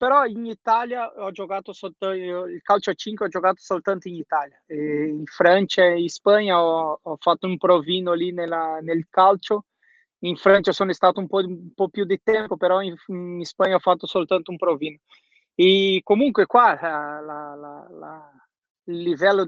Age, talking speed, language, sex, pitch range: 20-39, 180 wpm, Italian, male, 180-205 Hz